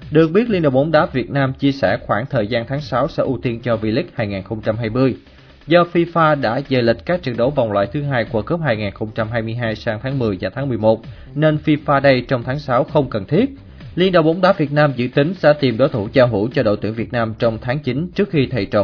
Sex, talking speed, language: male, 245 wpm, Vietnamese